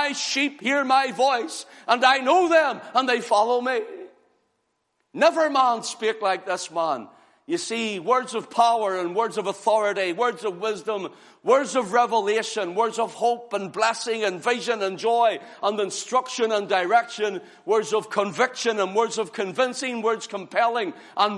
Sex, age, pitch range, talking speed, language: male, 50-69, 205-270 Hz, 160 wpm, English